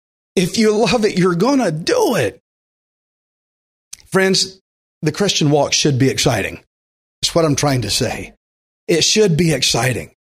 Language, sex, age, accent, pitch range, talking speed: English, male, 40-59, American, 155-230 Hz, 150 wpm